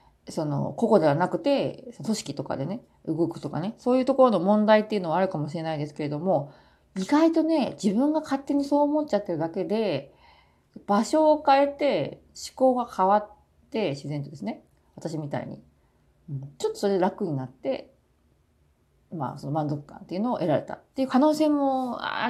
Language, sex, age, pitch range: Japanese, female, 40-59, 170-260 Hz